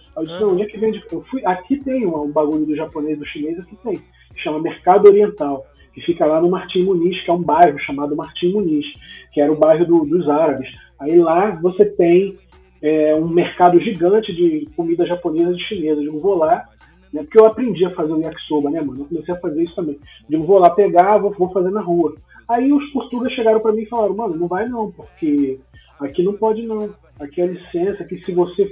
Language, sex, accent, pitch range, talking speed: Portuguese, male, Brazilian, 160-235 Hz, 220 wpm